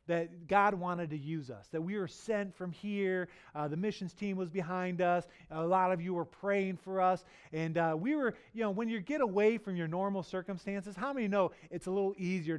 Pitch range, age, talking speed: 170-210 Hz, 30-49, 230 wpm